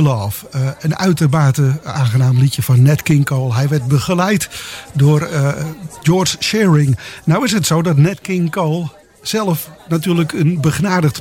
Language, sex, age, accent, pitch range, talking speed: English, male, 50-69, Dutch, 135-165 Hz, 150 wpm